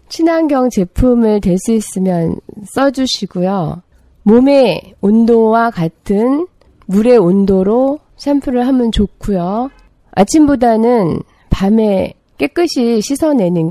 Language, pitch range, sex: Korean, 185-270 Hz, female